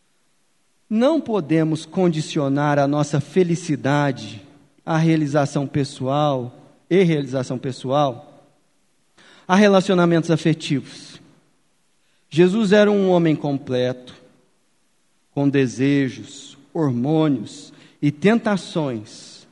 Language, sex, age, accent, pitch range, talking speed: Portuguese, male, 40-59, Brazilian, 145-205 Hz, 75 wpm